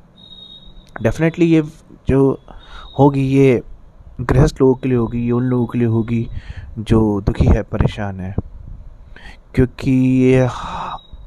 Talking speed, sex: 120 wpm, male